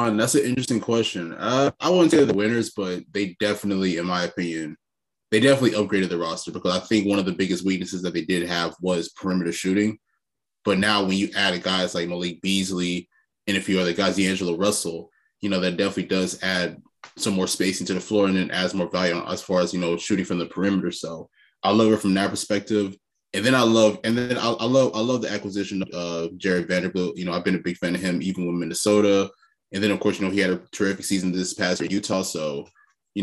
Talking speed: 235 wpm